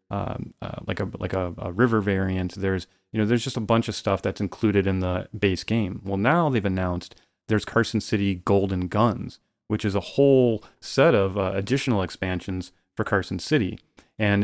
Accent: American